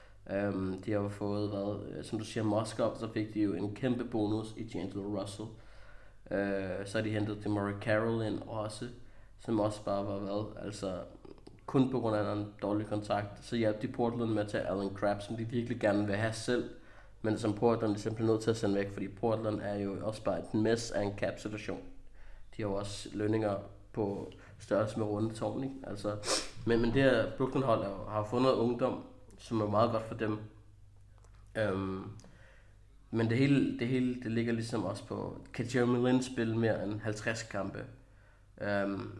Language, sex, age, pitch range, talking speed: Danish, male, 20-39, 105-115 Hz, 190 wpm